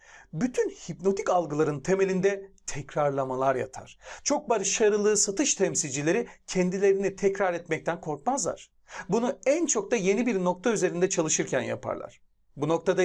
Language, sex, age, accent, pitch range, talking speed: Turkish, male, 40-59, native, 160-205 Hz, 120 wpm